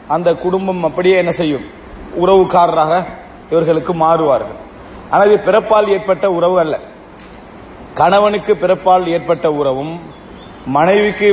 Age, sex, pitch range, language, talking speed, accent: 40-59, male, 165-195 Hz, English, 95 wpm, Indian